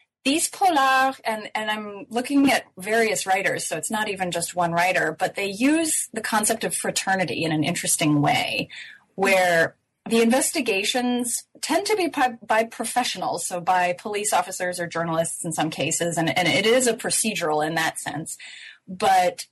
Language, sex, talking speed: English, female, 170 wpm